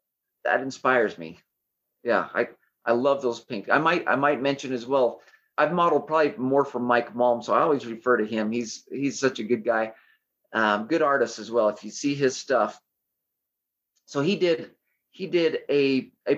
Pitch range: 120-150 Hz